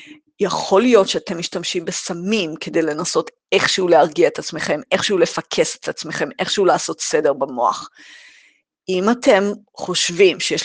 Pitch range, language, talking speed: 180-280 Hz, Hebrew, 130 wpm